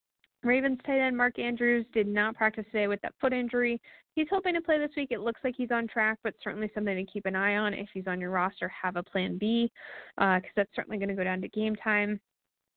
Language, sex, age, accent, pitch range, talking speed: English, female, 20-39, American, 195-240 Hz, 250 wpm